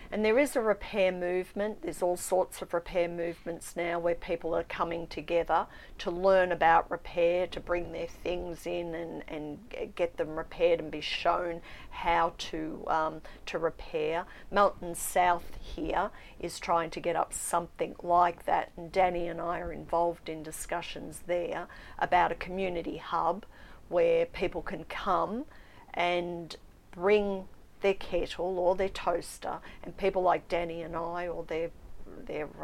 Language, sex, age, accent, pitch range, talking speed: English, female, 40-59, Australian, 170-190 Hz, 155 wpm